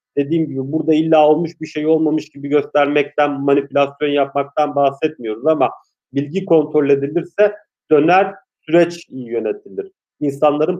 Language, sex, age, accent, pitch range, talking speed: Turkish, male, 40-59, native, 135-160 Hz, 115 wpm